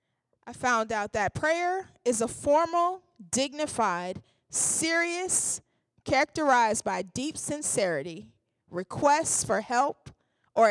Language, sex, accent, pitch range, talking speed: English, female, American, 210-275 Hz, 100 wpm